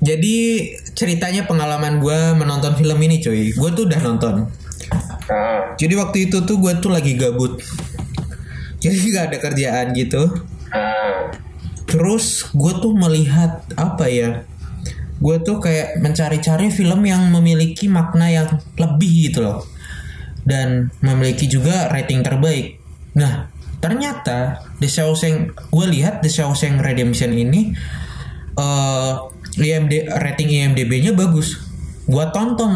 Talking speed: 115 wpm